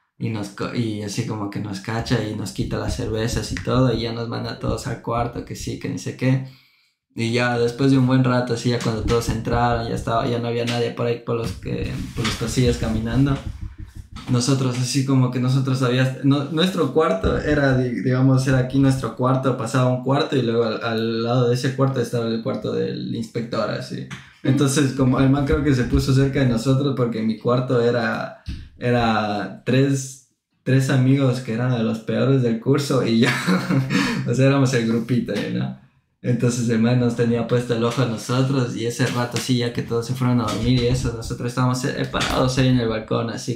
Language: English